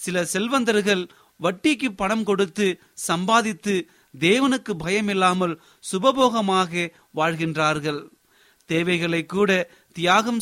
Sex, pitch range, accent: male, 160-210 Hz, native